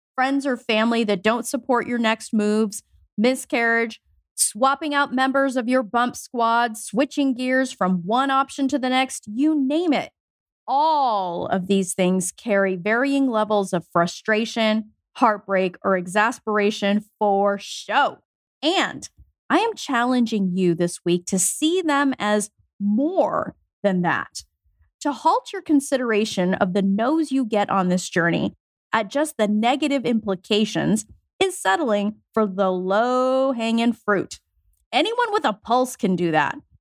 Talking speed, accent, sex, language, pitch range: 140 wpm, American, female, English, 205-275 Hz